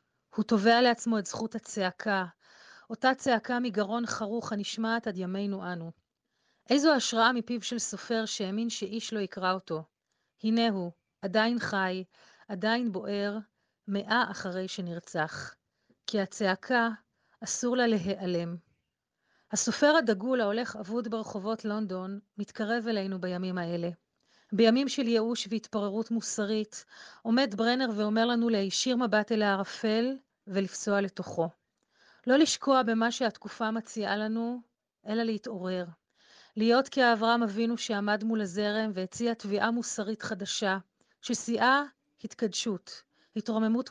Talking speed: 115 wpm